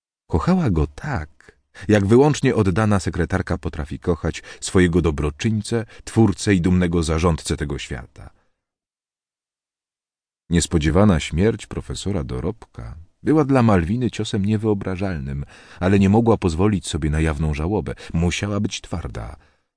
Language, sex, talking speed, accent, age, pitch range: Polish, male, 110 wpm, native, 40-59, 80-110 Hz